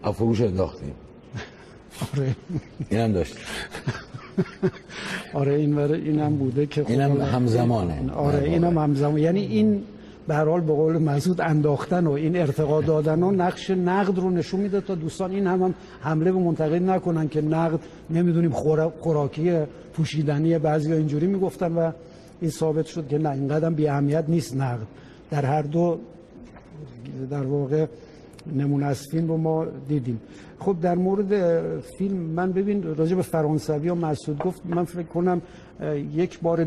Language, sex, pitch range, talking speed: Persian, male, 145-170 Hz, 140 wpm